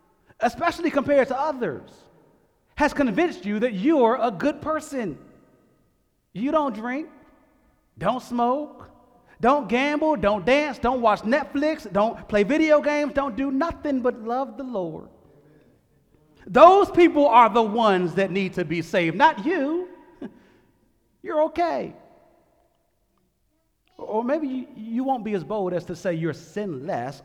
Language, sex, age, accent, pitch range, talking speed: English, male, 40-59, American, 185-295 Hz, 135 wpm